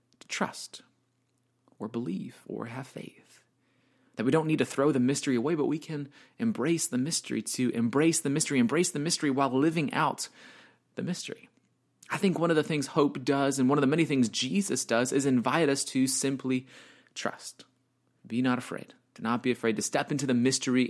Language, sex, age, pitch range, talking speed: English, male, 30-49, 125-155 Hz, 190 wpm